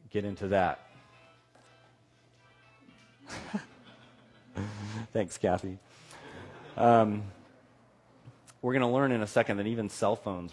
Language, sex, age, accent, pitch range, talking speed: English, male, 30-49, American, 100-130 Hz, 95 wpm